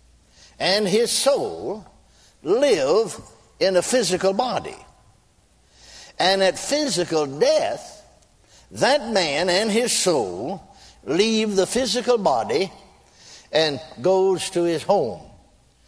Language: English